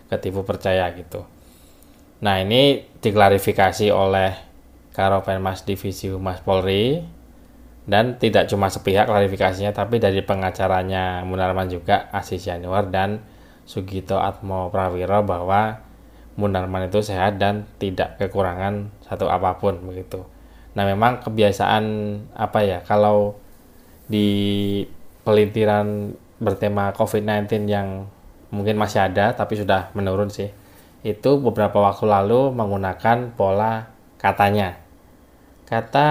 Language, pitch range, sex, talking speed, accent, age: Indonesian, 95-110 Hz, male, 105 wpm, native, 20-39